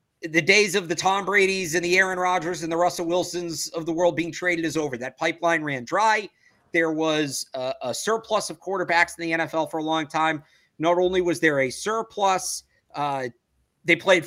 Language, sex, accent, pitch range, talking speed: English, male, American, 150-185 Hz, 200 wpm